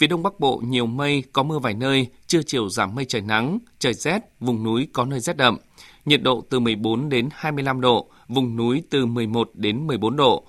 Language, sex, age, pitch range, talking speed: Vietnamese, male, 20-39, 120-145 Hz, 215 wpm